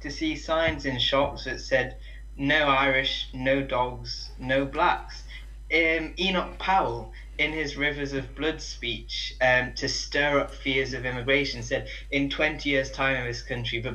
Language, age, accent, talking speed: English, 20-39, British, 165 wpm